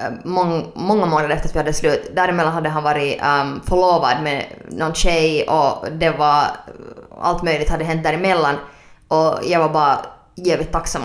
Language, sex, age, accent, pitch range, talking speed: Swedish, female, 20-39, Finnish, 155-180 Hz, 160 wpm